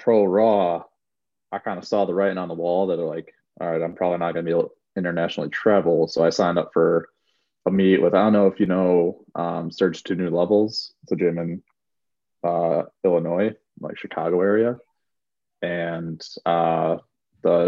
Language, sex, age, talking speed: English, male, 20-39, 190 wpm